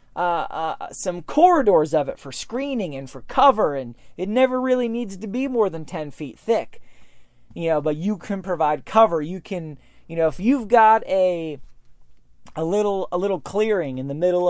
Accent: American